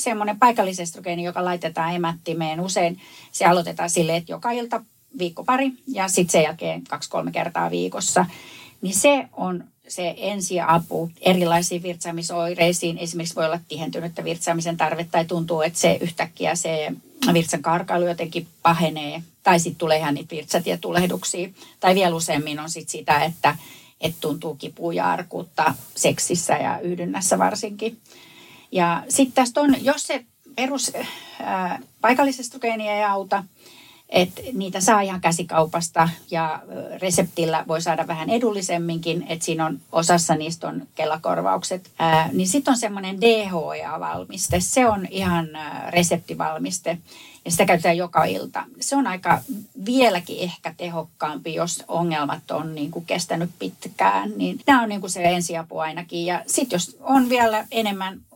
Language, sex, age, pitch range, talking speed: Finnish, female, 30-49, 165-200 Hz, 140 wpm